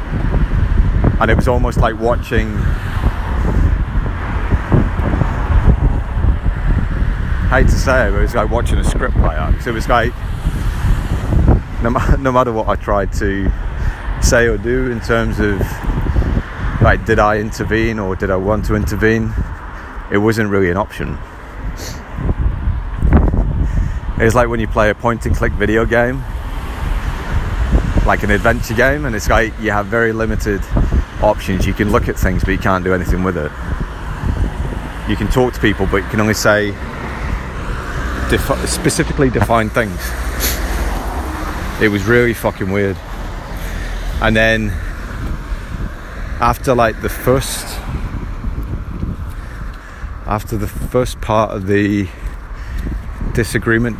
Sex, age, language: male, 30-49, English